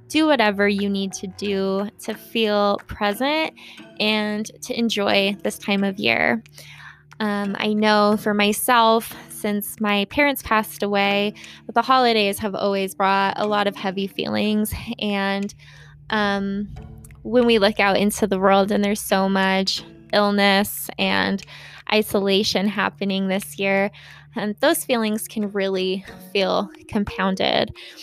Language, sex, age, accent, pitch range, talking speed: English, female, 10-29, American, 200-225 Hz, 135 wpm